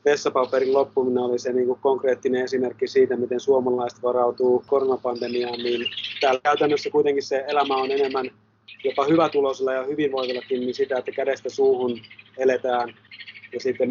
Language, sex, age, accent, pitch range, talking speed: Finnish, male, 30-49, native, 120-140 Hz, 150 wpm